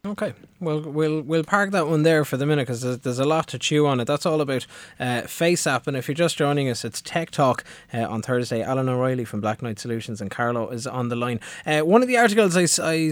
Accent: Irish